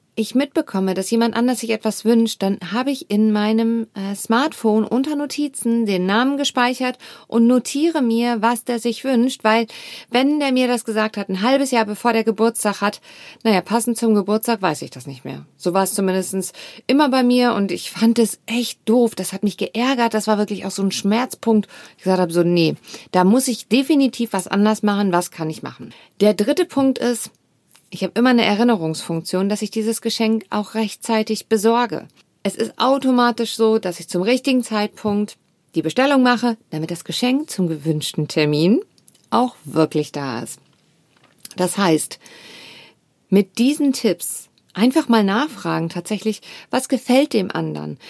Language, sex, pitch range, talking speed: German, female, 195-245 Hz, 175 wpm